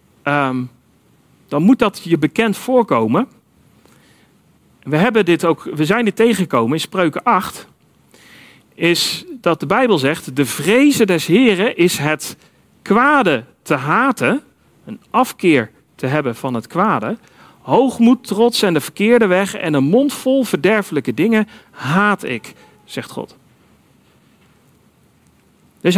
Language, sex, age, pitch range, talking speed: Dutch, male, 40-59, 150-225 Hz, 130 wpm